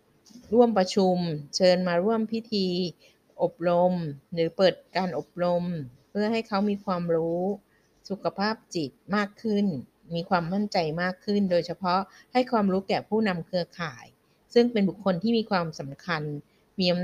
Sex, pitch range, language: female, 160-195 Hz, Thai